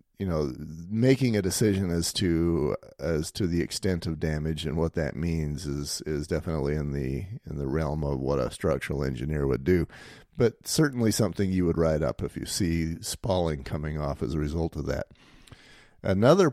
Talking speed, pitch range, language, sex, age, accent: 185 wpm, 80-105 Hz, English, male, 40-59, American